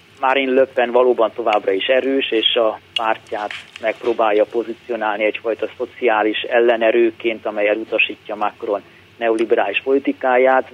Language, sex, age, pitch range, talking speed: Hungarian, male, 30-49, 110-125 Hz, 110 wpm